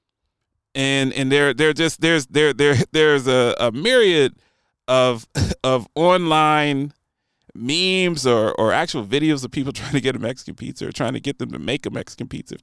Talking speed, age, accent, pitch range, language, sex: 185 wpm, 30-49, American, 125-185 Hz, English, male